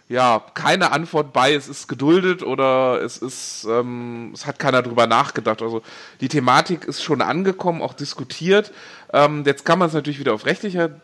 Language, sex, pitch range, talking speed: German, male, 130-155 Hz, 180 wpm